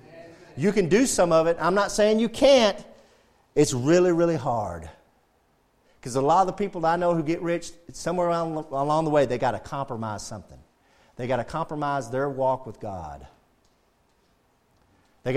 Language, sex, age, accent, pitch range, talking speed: English, male, 40-59, American, 130-205 Hz, 180 wpm